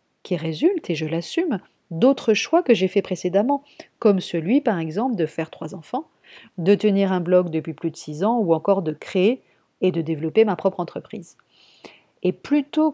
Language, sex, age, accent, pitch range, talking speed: French, female, 50-69, French, 175-240 Hz, 185 wpm